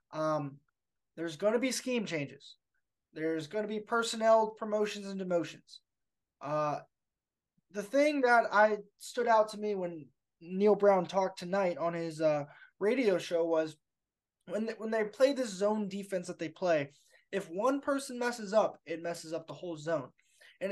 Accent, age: American, 20-39